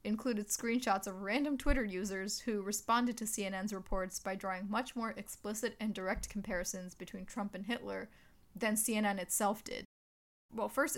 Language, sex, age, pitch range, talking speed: English, female, 20-39, 200-230 Hz, 160 wpm